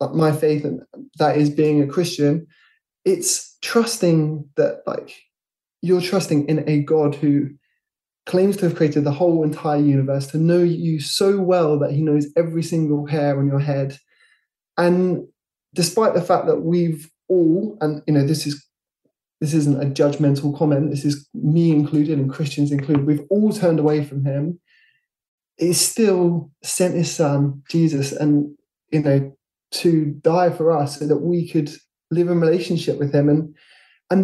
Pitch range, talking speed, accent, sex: 145-170 Hz, 165 wpm, British, male